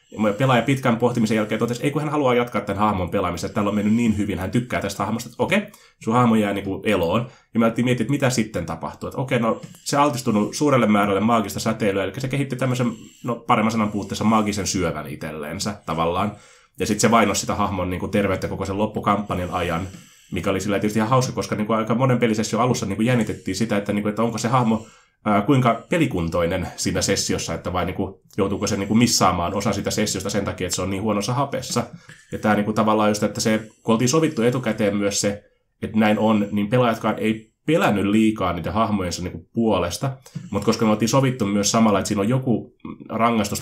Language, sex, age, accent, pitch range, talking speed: Finnish, male, 20-39, native, 100-120 Hz, 205 wpm